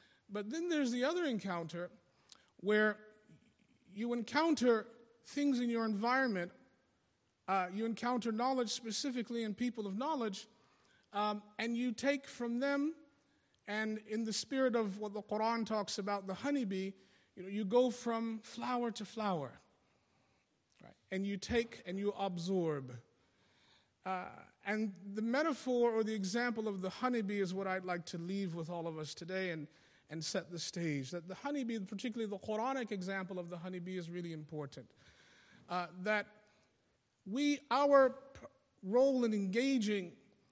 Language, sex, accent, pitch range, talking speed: English, male, American, 190-235 Hz, 150 wpm